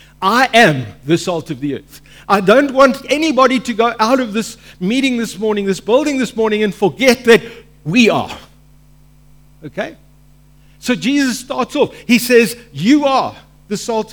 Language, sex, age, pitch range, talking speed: English, male, 50-69, 145-245 Hz, 165 wpm